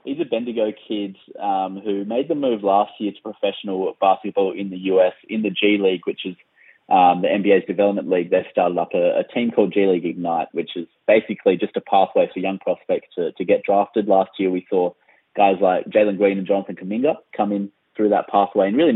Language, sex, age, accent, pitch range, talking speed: English, male, 20-39, Australian, 90-105 Hz, 220 wpm